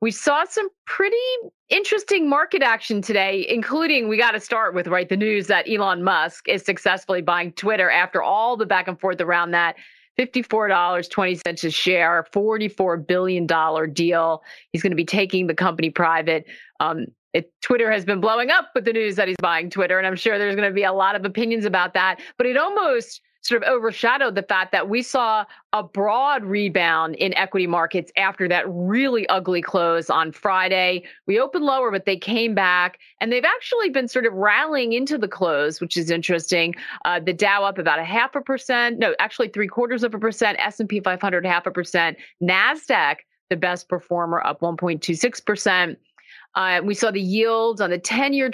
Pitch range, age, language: 180-230 Hz, 40-59, English